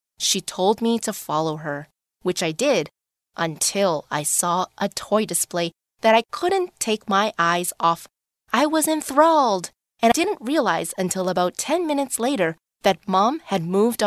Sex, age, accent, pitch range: female, 20-39, American, 180-245 Hz